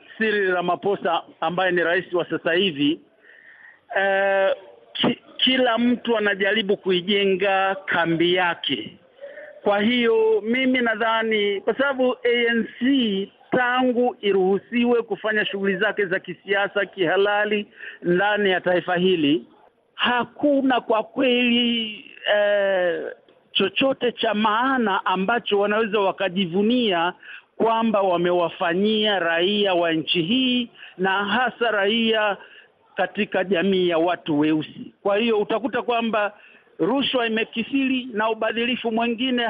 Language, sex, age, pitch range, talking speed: Swahili, male, 50-69, 190-240 Hz, 105 wpm